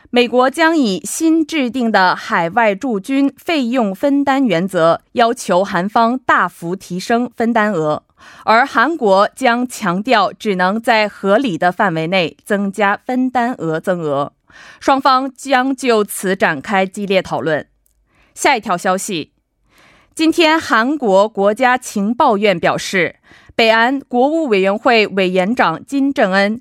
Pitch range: 185-255 Hz